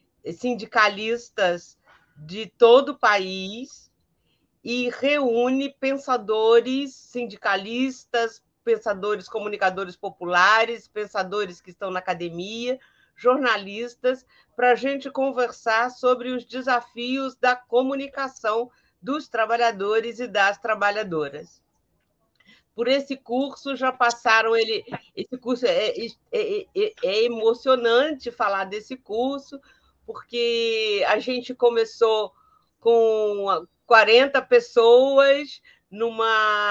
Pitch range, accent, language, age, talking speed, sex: 215-260 Hz, Brazilian, Portuguese, 50-69, 90 wpm, female